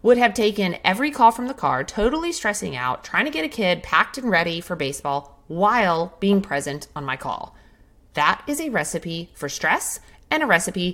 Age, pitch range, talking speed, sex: 30-49, 170-250 Hz, 195 wpm, female